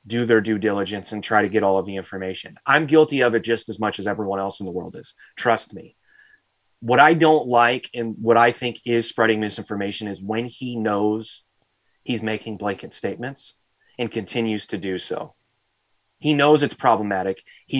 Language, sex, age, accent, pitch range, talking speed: English, male, 30-49, American, 100-120 Hz, 190 wpm